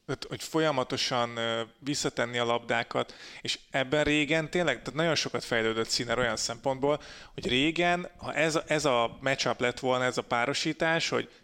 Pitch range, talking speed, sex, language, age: 120-150 Hz, 150 wpm, male, Hungarian, 30-49